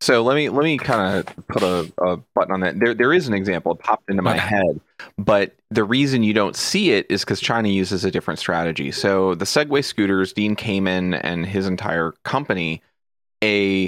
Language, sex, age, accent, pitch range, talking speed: English, male, 30-49, American, 90-110 Hz, 210 wpm